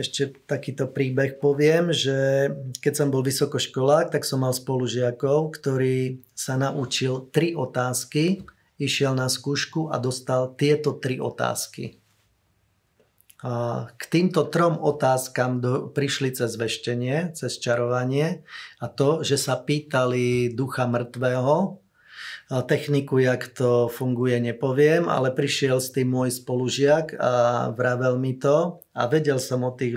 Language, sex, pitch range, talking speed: Slovak, male, 125-145 Hz, 130 wpm